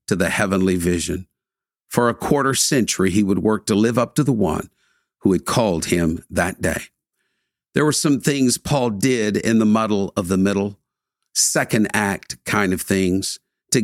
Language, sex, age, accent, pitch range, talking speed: English, male, 50-69, American, 95-125 Hz, 180 wpm